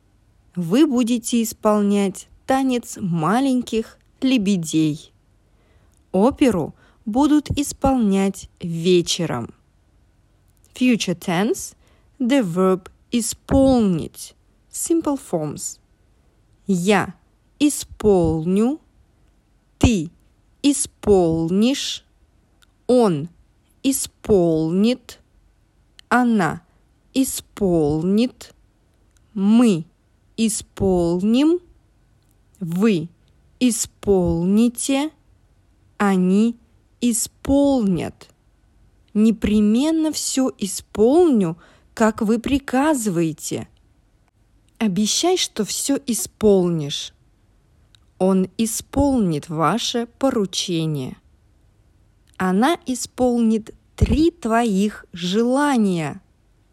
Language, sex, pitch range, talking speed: English, female, 155-245 Hz, 55 wpm